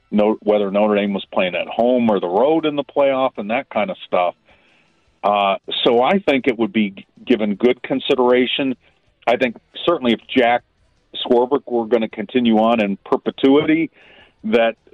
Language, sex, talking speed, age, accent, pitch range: English, male, 175 wpm, 50-69, American, 105-135 Hz